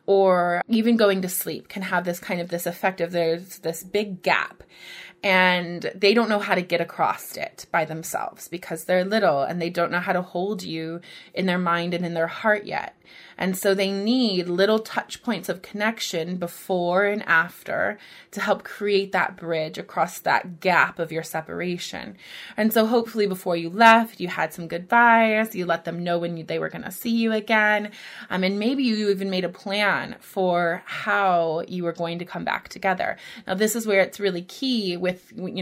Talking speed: 200 wpm